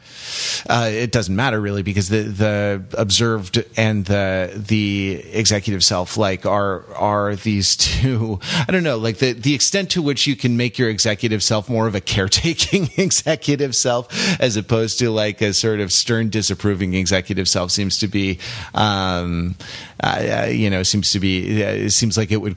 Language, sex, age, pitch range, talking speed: English, male, 30-49, 95-120 Hz, 180 wpm